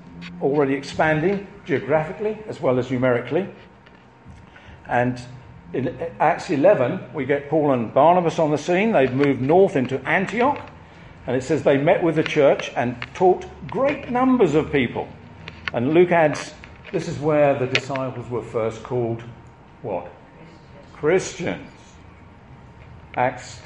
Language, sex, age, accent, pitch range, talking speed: English, male, 50-69, British, 120-170 Hz, 130 wpm